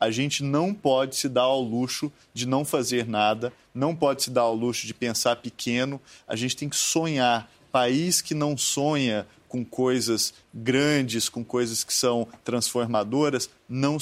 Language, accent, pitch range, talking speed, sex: Portuguese, Brazilian, 125-165 Hz, 165 wpm, male